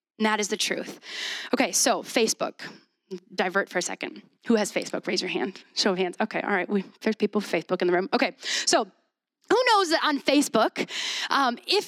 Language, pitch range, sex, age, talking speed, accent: English, 210-315 Hz, female, 20-39, 200 wpm, American